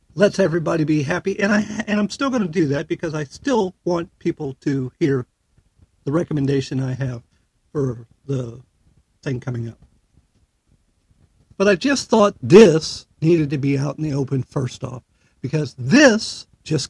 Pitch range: 130-170 Hz